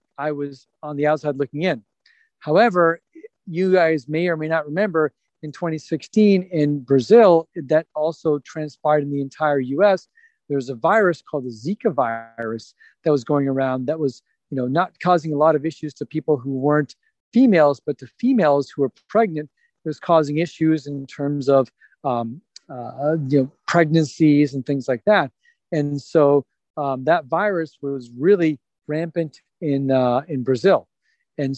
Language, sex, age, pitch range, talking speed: English, male, 40-59, 140-170 Hz, 165 wpm